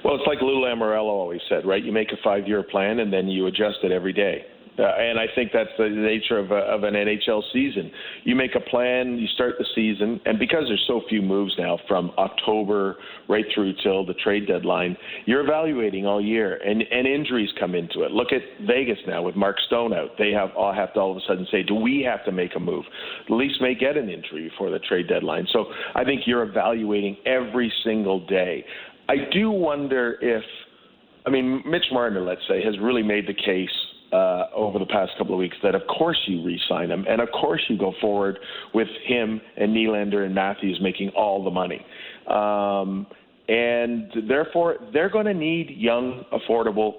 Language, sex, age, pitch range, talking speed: English, male, 50-69, 100-130 Hz, 205 wpm